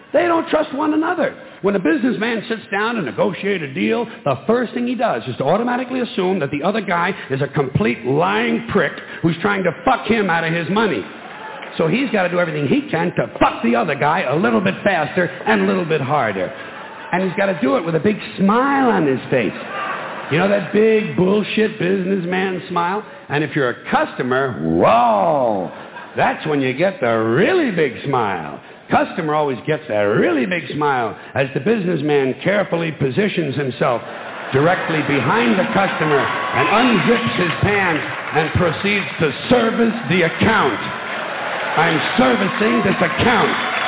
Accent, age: American, 60-79